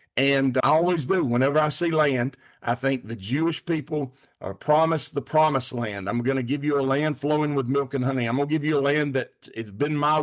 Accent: American